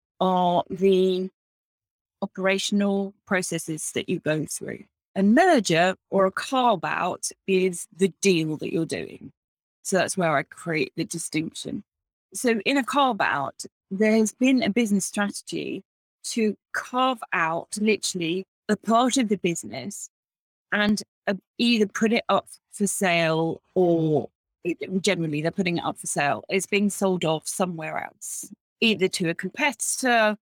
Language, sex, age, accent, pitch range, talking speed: English, female, 30-49, British, 185-225 Hz, 140 wpm